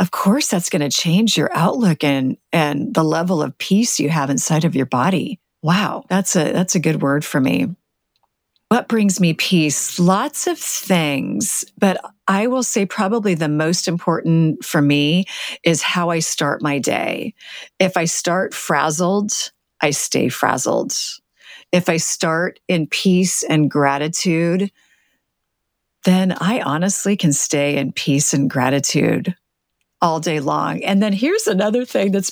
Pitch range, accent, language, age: 160-205 Hz, American, English, 40-59